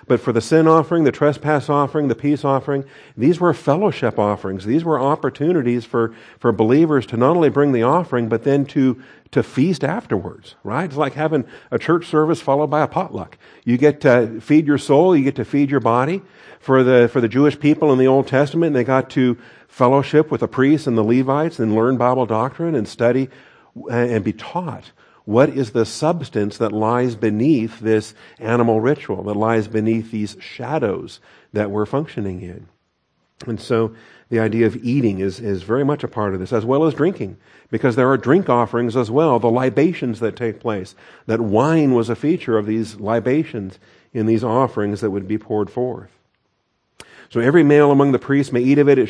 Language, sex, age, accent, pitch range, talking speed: English, male, 50-69, American, 115-145 Hz, 200 wpm